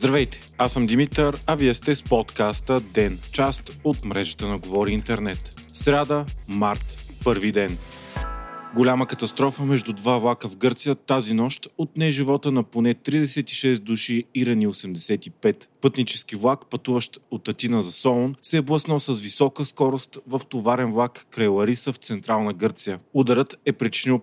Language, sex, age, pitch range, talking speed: Bulgarian, male, 30-49, 110-135 Hz, 155 wpm